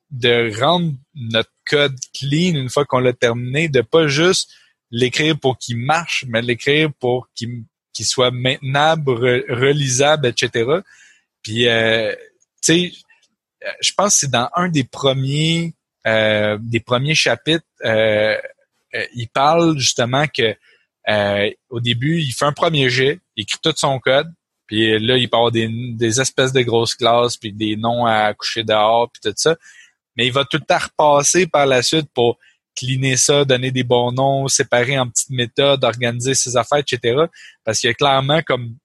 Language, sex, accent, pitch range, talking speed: French, male, Canadian, 120-145 Hz, 170 wpm